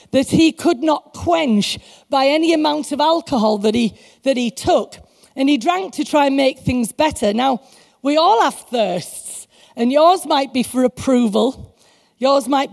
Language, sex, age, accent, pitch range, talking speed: English, female, 40-59, British, 235-300 Hz, 170 wpm